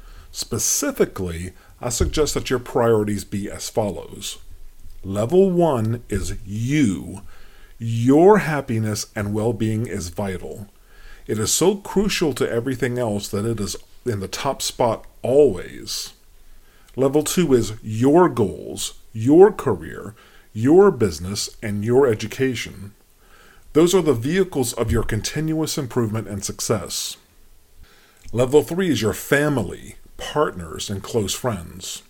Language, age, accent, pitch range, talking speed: English, 40-59, American, 105-150 Hz, 120 wpm